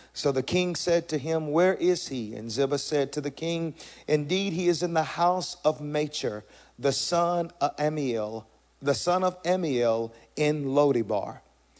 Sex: male